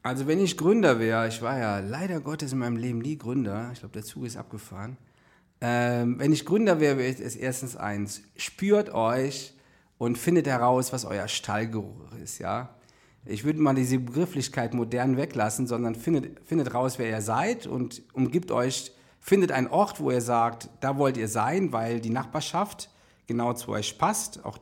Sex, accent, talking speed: male, German, 185 wpm